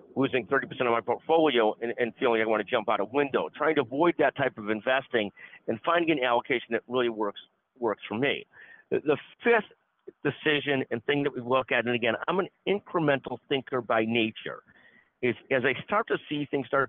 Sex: male